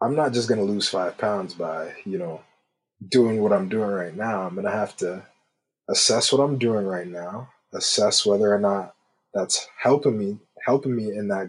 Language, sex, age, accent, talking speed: English, male, 20-39, American, 205 wpm